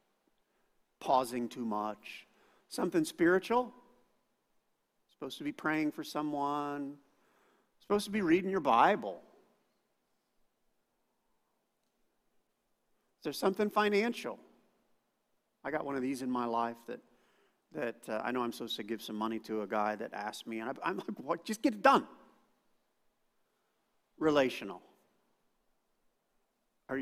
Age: 50-69